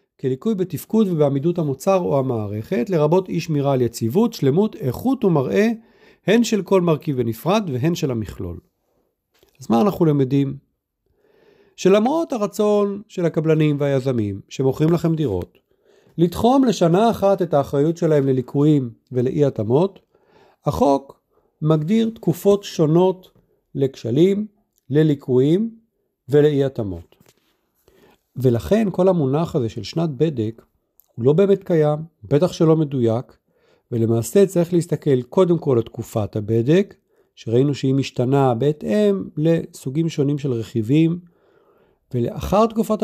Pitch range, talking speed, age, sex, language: 130-190 Hz, 115 wpm, 50-69, male, Hebrew